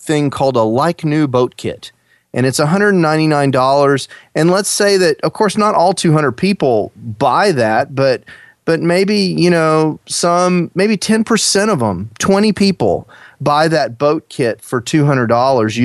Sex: male